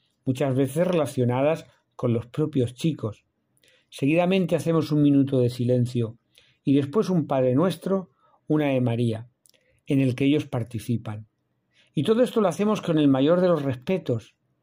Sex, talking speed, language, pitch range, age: male, 150 wpm, Spanish, 125-170 Hz, 50-69